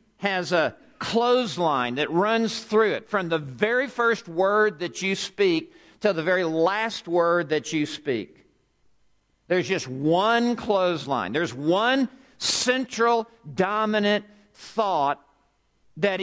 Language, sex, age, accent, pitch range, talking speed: English, male, 50-69, American, 170-220 Hz, 120 wpm